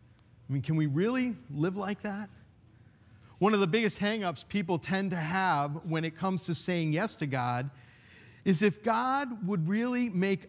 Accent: American